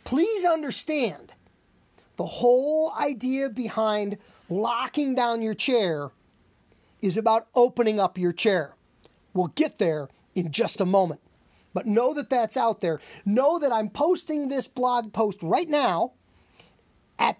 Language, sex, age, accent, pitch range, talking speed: English, male, 40-59, American, 200-265 Hz, 135 wpm